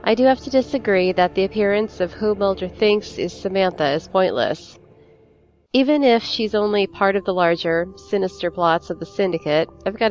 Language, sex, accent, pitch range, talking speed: English, female, American, 170-215 Hz, 185 wpm